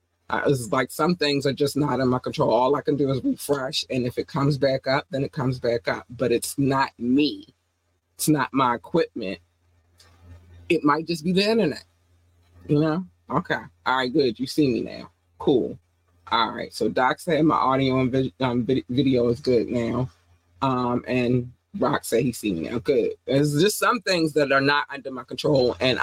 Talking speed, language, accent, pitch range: 200 wpm, English, American, 110-150 Hz